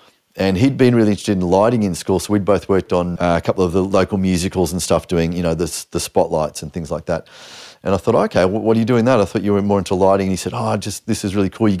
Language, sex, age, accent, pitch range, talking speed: English, male, 30-49, Australian, 85-105 Hz, 305 wpm